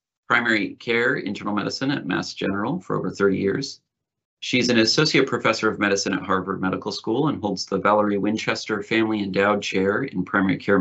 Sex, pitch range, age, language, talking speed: male, 105-130 Hz, 40-59, English, 180 wpm